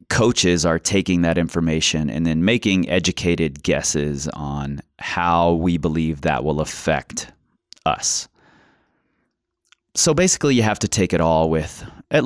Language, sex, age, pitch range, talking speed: English, male, 30-49, 80-100 Hz, 135 wpm